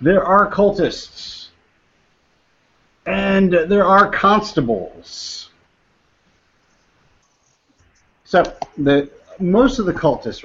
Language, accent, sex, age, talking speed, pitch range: English, American, male, 50-69, 75 wpm, 110-155 Hz